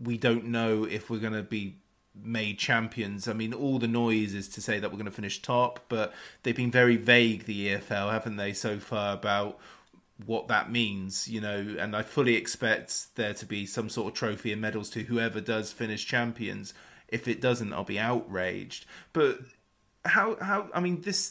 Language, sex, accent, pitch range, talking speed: English, male, British, 110-125 Hz, 200 wpm